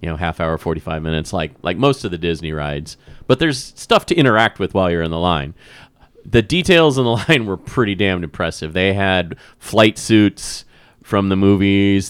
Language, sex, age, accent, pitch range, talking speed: English, male, 30-49, American, 90-115 Hz, 200 wpm